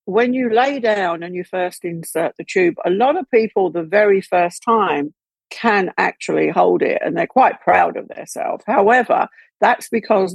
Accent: British